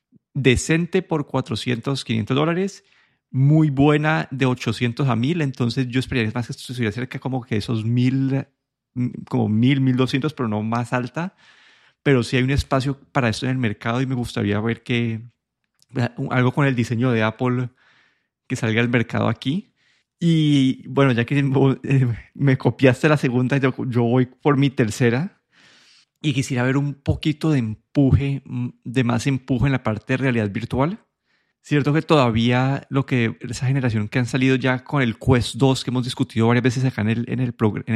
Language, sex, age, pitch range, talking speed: Spanish, male, 30-49, 120-140 Hz, 175 wpm